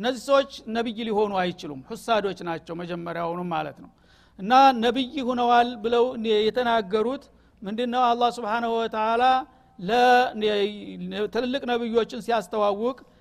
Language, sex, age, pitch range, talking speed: Amharic, male, 60-79, 210-245 Hz, 105 wpm